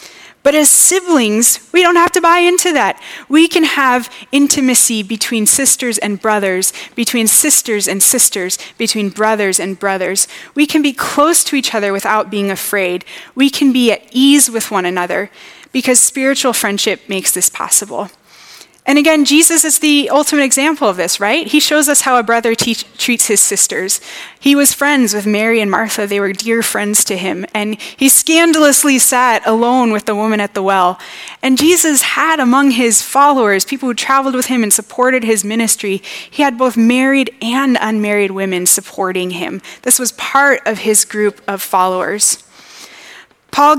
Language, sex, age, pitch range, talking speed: English, female, 20-39, 205-275 Hz, 175 wpm